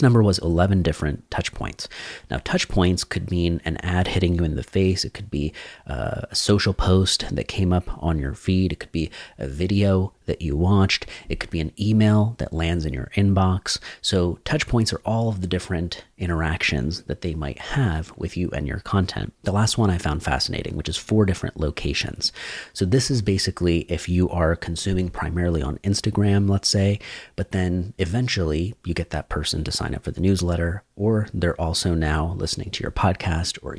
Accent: American